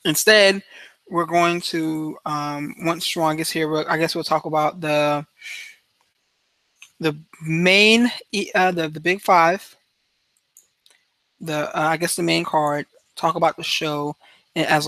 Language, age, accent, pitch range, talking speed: English, 20-39, American, 150-175 Hz, 135 wpm